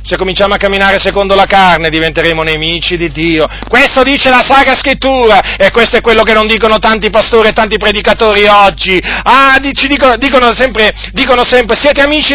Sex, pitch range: male, 170-245 Hz